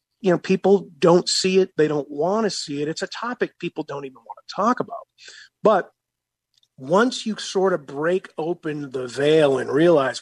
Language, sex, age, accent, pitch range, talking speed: English, male, 40-59, American, 140-180 Hz, 195 wpm